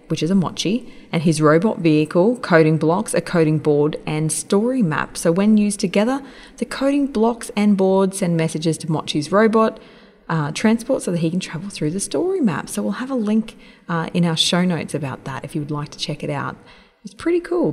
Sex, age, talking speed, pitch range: female, 20-39, 215 wpm, 165-230 Hz